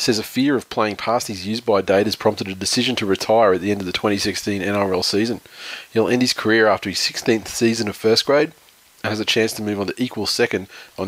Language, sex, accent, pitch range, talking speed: English, male, Australian, 95-110 Hz, 250 wpm